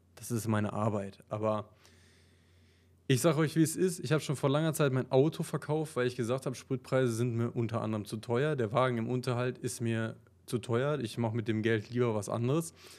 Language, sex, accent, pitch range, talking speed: German, male, German, 110-150 Hz, 215 wpm